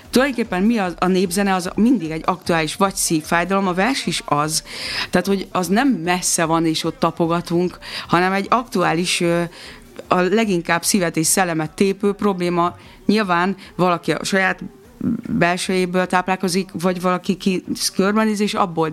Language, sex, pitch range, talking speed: Hungarian, female, 170-200 Hz, 140 wpm